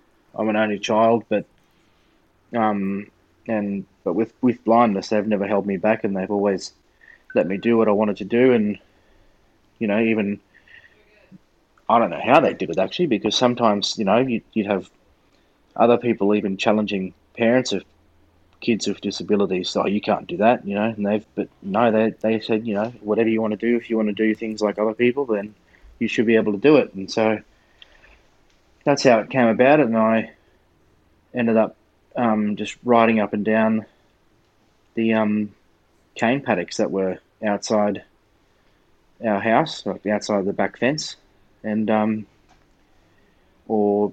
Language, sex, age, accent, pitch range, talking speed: English, male, 20-39, Australian, 100-110 Hz, 175 wpm